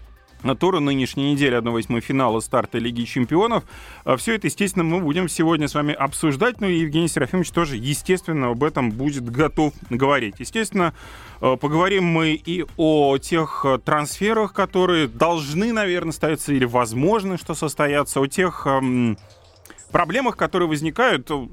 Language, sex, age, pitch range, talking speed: Russian, male, 30-49, 130-175 Hz, 135 wpm